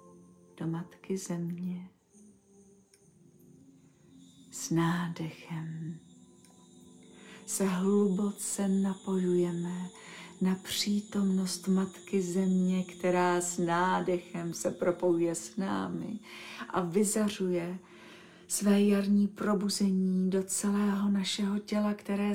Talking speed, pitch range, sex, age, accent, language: 80 wpm, 175-200 Hz, female, 40-59, native, Czech